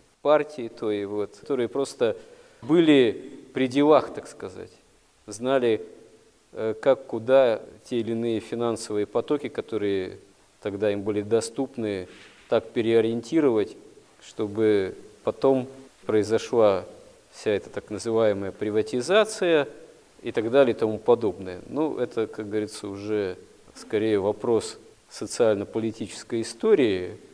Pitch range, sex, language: 105-140 Hz, male, Russian